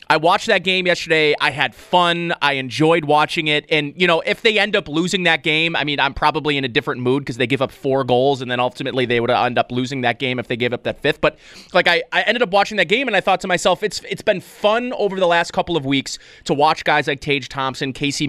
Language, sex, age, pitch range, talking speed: English, male, 30-49, 140-185 Hz, 270 wpm